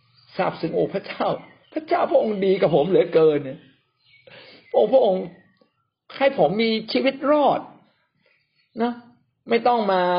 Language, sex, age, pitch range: Thai, male, 60-79, 155-235 Hz